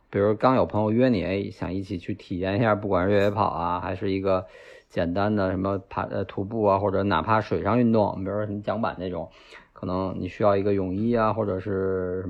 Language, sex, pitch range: Chinese, male, 95-110 Hz